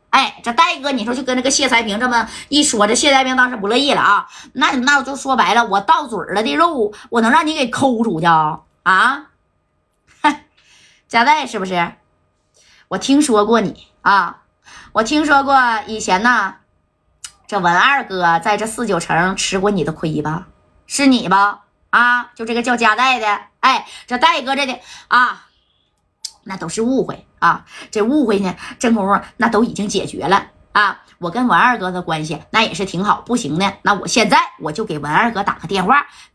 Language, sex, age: Chinese, female, 20-39